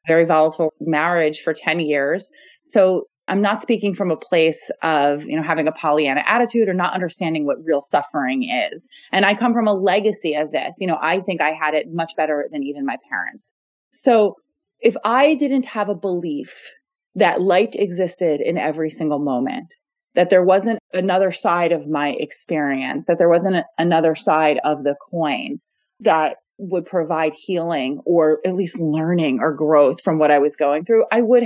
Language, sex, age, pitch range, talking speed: English, female, 30-49, 155-200 Hz, 185 wpm